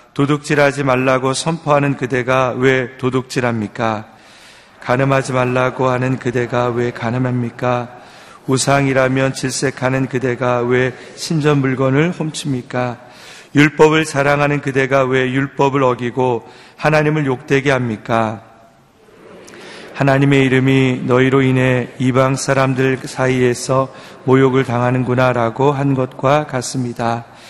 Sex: male